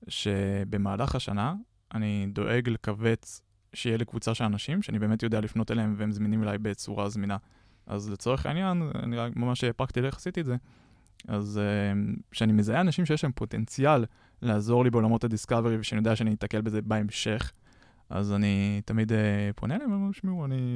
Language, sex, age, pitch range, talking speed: Hebrew, male, 20-39, 105-130 Hz, 155 wpm